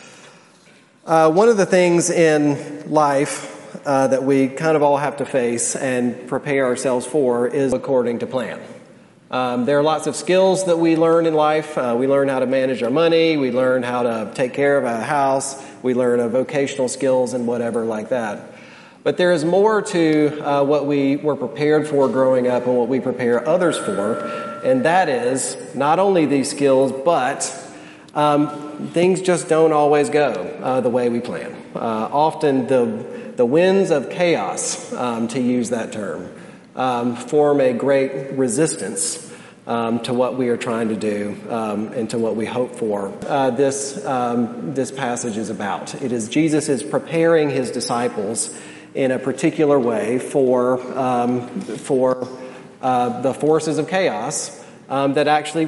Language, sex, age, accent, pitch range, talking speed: English, male, 40-59, American, 125-155 Hz, 170 wpm